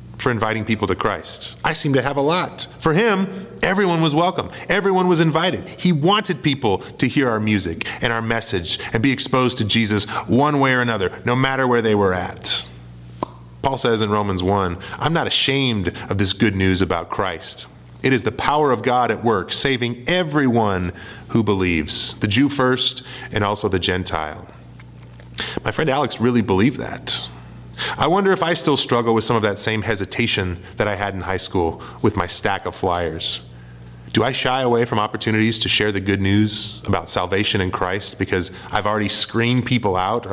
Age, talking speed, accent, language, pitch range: 30-49, 190 wpm, American, English, 90-125 Hz